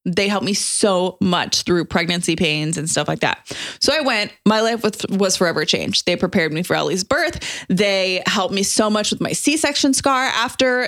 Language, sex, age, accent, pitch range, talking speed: English, female, 20-39, American, 185-245 Hz, 200 wpm